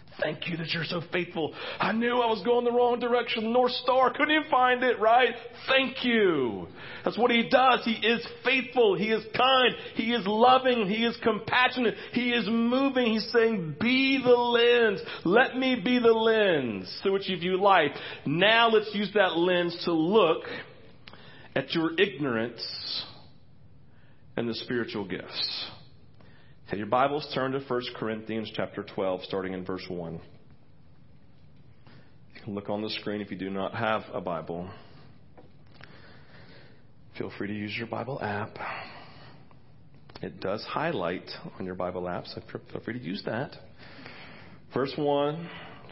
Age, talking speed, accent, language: 40-59, 155 wpm, American, English